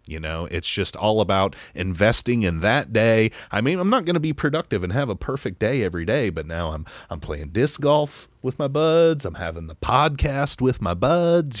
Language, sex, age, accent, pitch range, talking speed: English, male, 30-49, American, 85-120 Hz, 210 wpm